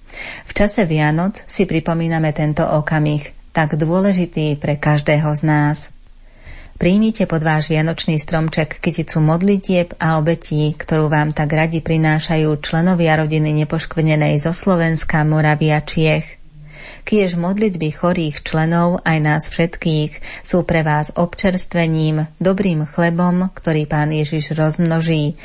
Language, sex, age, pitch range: Slovak, female, 30-49, 155-175 Hz